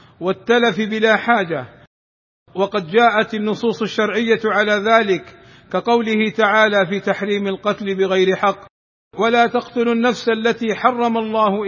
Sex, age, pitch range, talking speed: male, 50-69, 195-225 Hz, 115 wpm